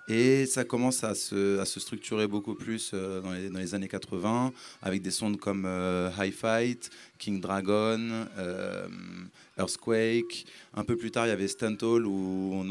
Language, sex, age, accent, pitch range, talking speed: French, male, 30-49, French, 100-125 Hz, 180 wpm